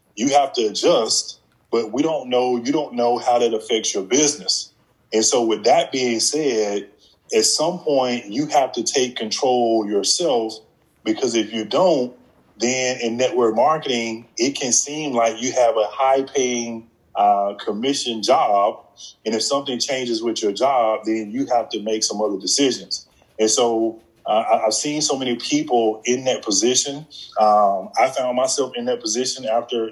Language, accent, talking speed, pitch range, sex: English, American, 170 wpm, 110-135 Hz, male